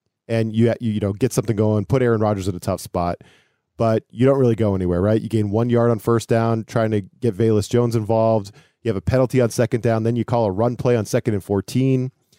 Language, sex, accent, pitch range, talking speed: English, male, American, 110-135 Hz, 245 wpm